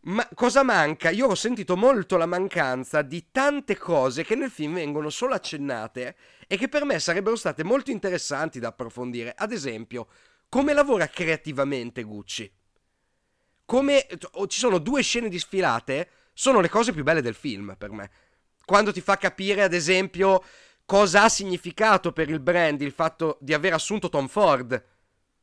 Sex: male